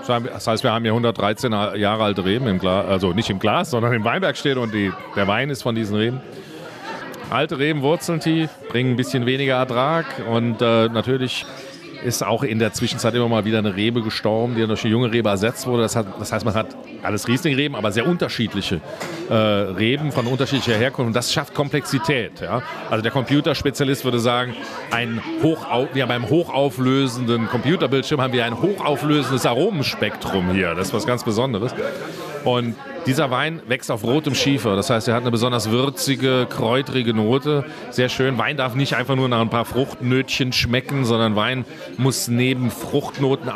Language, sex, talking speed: German, male, 185 wpm